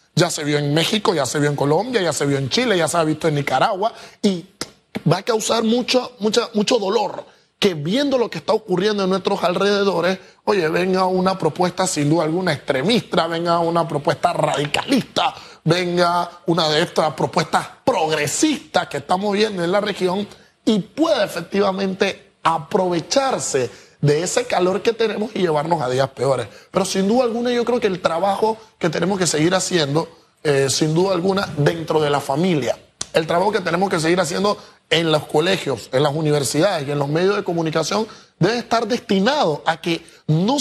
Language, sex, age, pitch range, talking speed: Spanish, male, 30-49, 160-215 Hz, 180 wpm